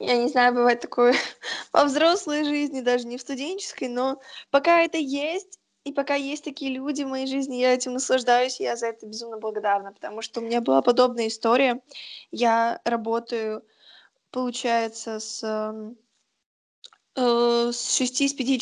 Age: 10-29